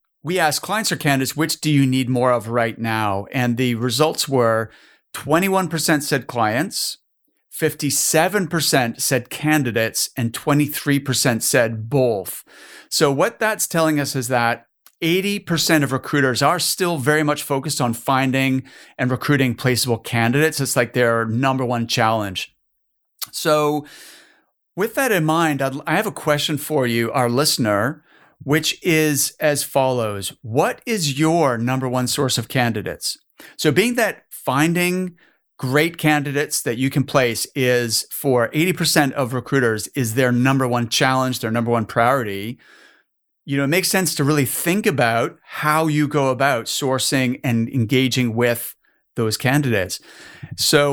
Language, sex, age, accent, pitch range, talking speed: English, male, 40-59, American, 125-155 Hz, 145 wpm